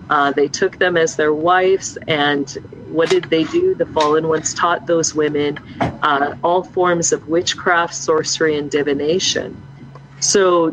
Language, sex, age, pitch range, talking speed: English, female, 40-59, 150-185 Hz, 150 wpm